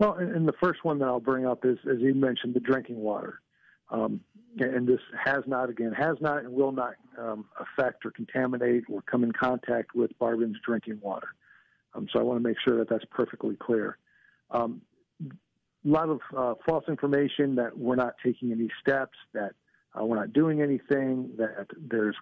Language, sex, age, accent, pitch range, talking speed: English, male, 50-69, American, 115-135 Hz, 190 wpm